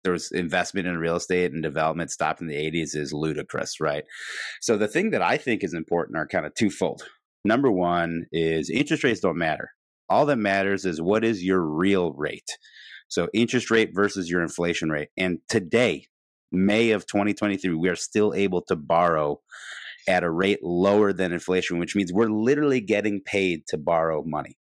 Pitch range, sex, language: 85-105 Hz, male, English